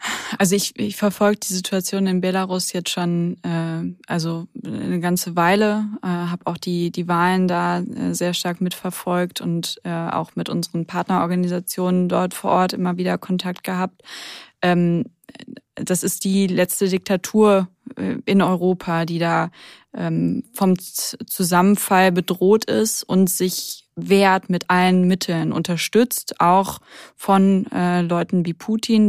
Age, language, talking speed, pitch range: 20-39, German, 135 wpm, 180-210 Hz